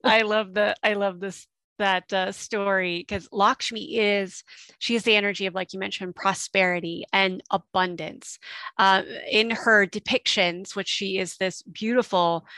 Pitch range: 180-210 Hz